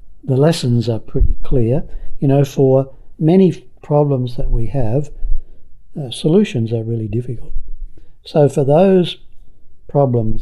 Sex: male